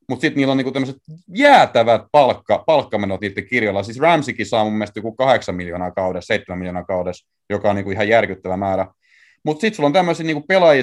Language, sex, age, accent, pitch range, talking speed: Finnish, male, 30-49, native, 100-130 Hz, 200 wpm